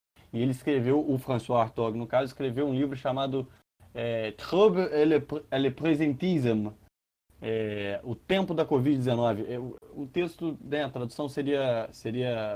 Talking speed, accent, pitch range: 150 wpm, Brazilian, 105-130 Hz